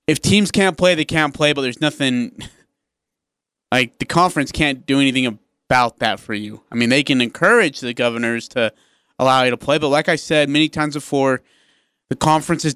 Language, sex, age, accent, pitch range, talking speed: English, male, 30-49, American, 135-170 Hz, 195 wpm